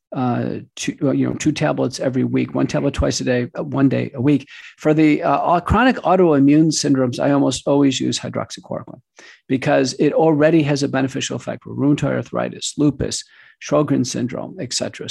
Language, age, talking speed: English, 50-69, 170 wpm